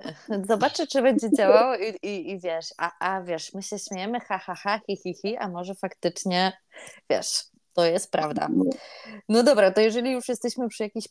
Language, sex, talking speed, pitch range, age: Polish, female, 190 wpm, 185-225 Hz, 20-39